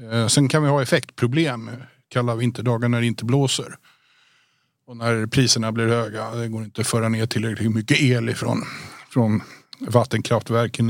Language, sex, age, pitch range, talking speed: Swedish, male, 50-69, 115-130 Hz, 165 wpm